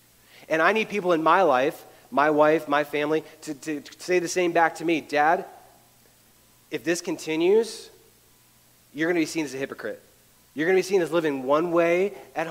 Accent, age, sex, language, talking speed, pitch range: American, 30-49, male, English, 195 wpm, 140-170 Hz